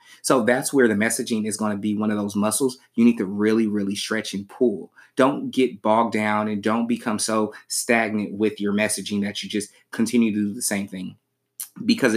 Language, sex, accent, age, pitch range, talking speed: English, male, American, 20-39, 105-125 Hz, 210 wpm